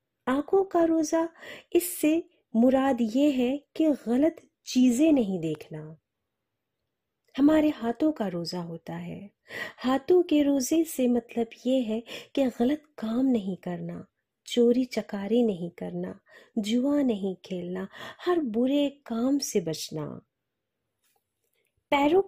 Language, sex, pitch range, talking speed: Hindi, female, 185-275 Hz, 115 wpm